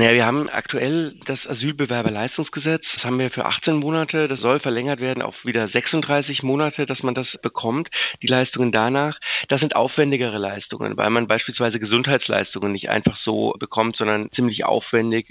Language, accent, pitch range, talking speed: German, German, 120-145 Hz, 160 wpm